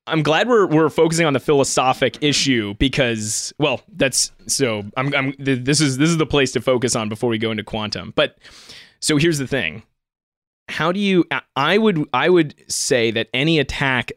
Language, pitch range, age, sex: English, 115-150 Hz, 20-39, male